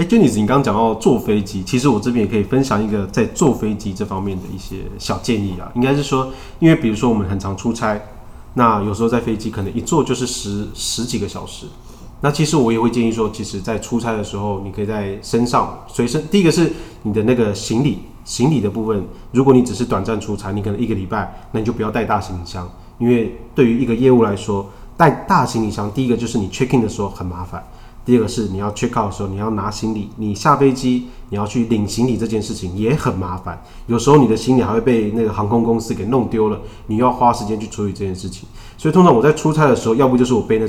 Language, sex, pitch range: Chinese, male, 100-120 Hz